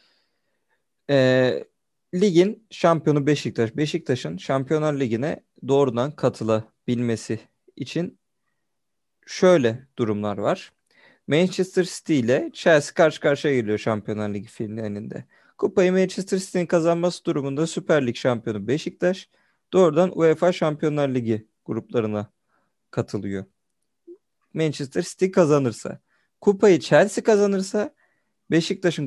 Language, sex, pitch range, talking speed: Turkish, male, 130-185 Hz, 95 wpm